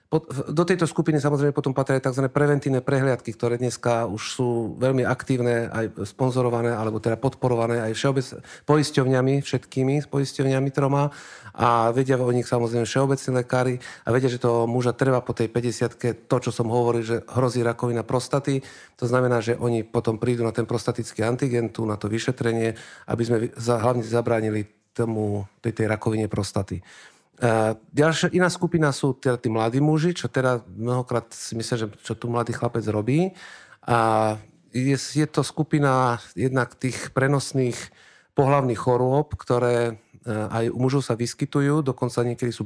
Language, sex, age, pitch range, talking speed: Slovak, male, 40-59, 115-135 Hz, 155 wpm